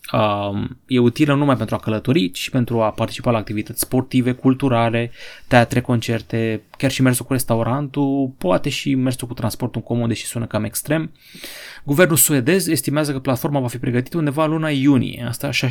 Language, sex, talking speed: Romanian, male, 175 wpm